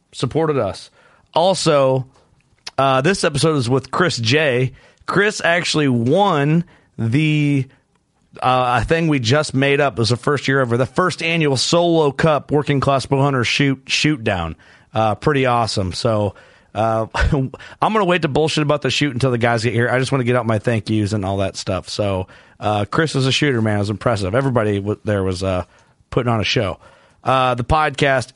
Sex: male